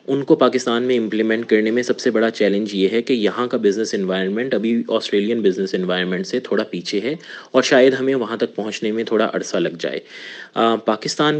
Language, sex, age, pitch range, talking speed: Urdu, male, 30-49, 100-125 Hz, 205 wpm